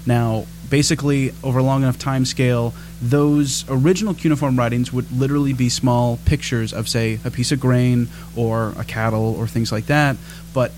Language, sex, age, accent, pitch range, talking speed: English, male, 30-49, American, 120-150 Hz, 175 wpm